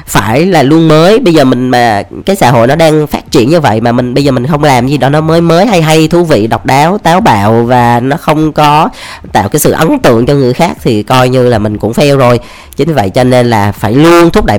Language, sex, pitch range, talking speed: Vietnamese, female, 110-155 Hz, 275 wpm